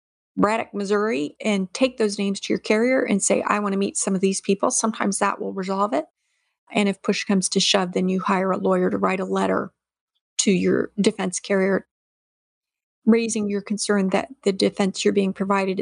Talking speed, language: 195 wpm, English